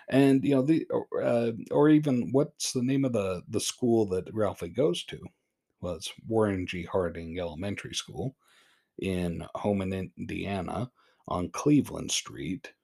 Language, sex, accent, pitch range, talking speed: English, male, American, 85-105 Hz, 140 wpm